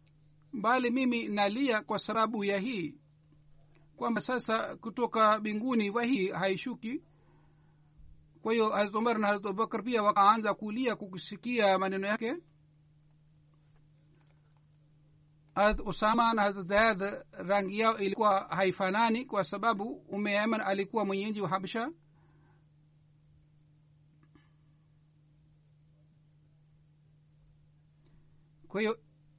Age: 60-79